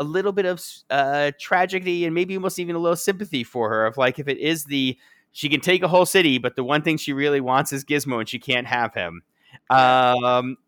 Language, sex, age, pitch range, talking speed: English, male, 30-49, 130-160 Hz, 235 wpm